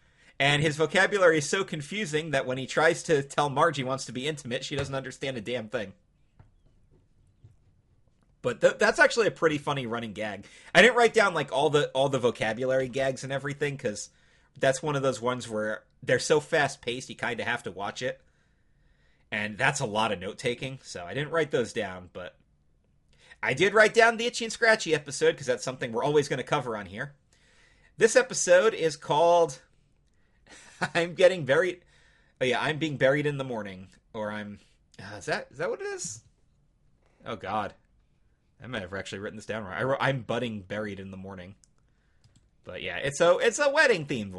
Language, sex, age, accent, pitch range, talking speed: English, male, 30-49, American, 120-175 Hz, 190 wpm